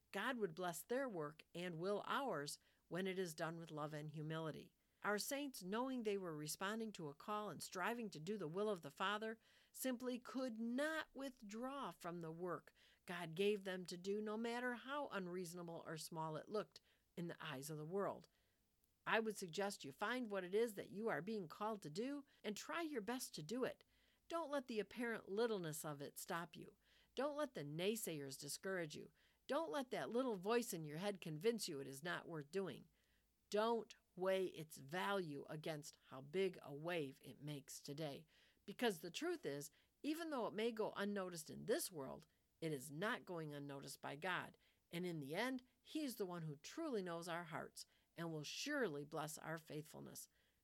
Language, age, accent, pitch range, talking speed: English, 50-69, American, 160-225 Hz, 195 wpm